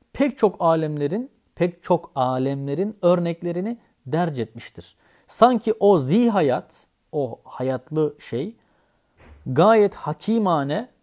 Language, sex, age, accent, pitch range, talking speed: Turkish, male, 40-59, native, 135-185 Hz, 100 wpm